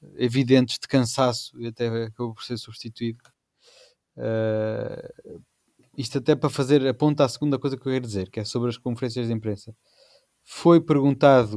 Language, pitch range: Portuguese, 115-140 Hz